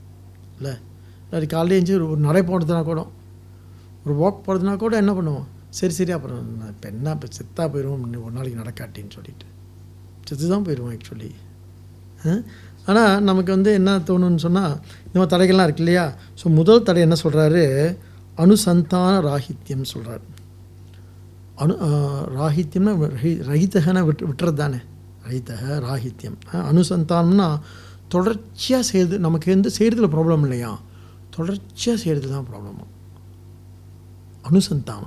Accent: Indian